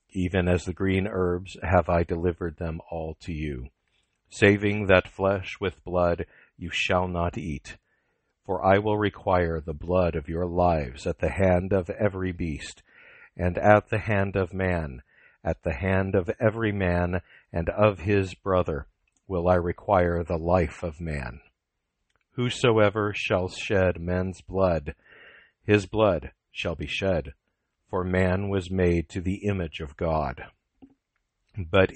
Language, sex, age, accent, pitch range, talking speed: English, male, 50-69, American, 85-100 Hz, 150 wpm